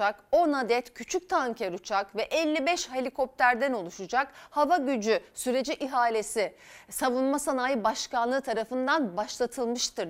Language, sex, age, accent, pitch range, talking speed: Turkish, female, 40-59, native, 230-325 Hz, 105 wpm